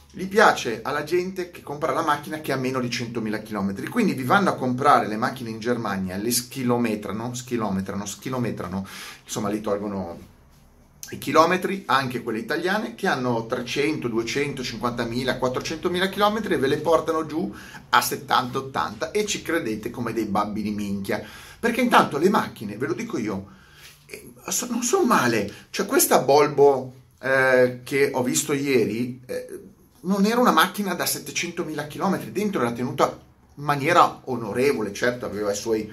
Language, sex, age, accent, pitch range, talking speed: Italian, male, 30-49, native, 115-170 Hz, 150 wpm